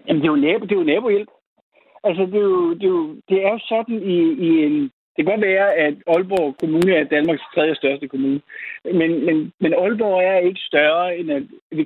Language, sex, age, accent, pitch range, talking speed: Danish, male, 60-79, native, 155-240 Hz, 220 wpm